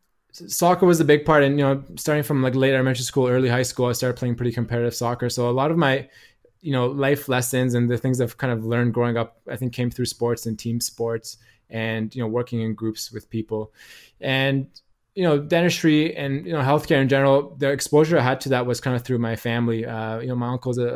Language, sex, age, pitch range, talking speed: English, male, 20-39, 115-140 Hz, 245 wpm